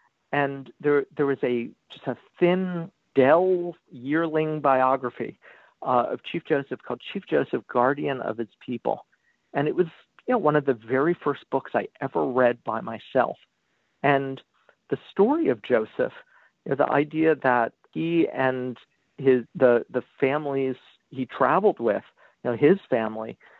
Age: 50-69